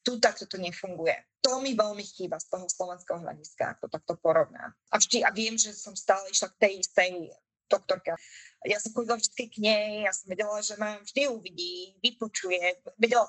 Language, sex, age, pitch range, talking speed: Slovak, female, 20-39, 185-240 Hz, 195 wpm